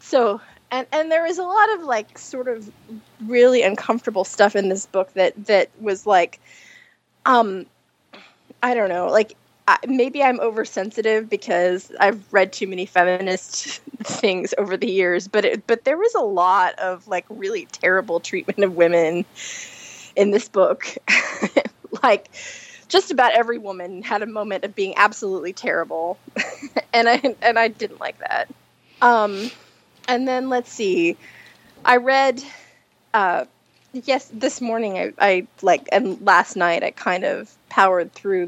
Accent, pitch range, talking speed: American, 185-255 Hz, 155 wpm